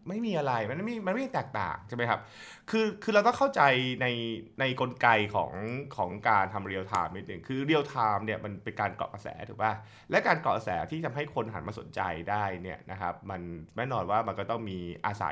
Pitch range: 105-155 Hz